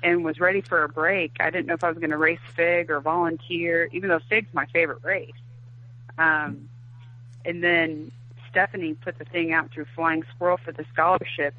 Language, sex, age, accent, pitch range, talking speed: English, female, 30-49, American, 120-165 Hz, 195 wpm